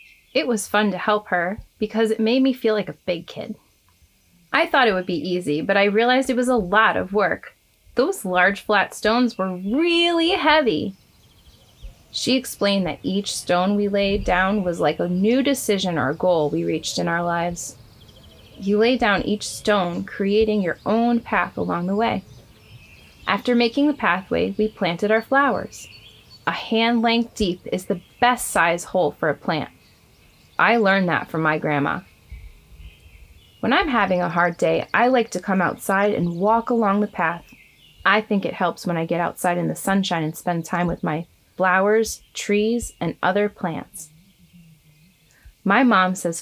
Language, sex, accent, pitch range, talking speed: English, female, American, 170-220 Hz, 175 wpm